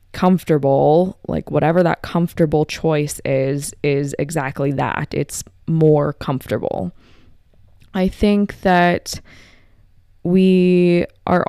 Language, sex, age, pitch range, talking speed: English, female, 20-39, 115-185 Hz, 95 wpm